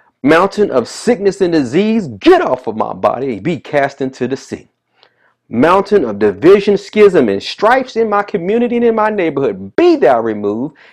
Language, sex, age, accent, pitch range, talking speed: English, male, 30-49, American, 130-210 Hz, 170 wpm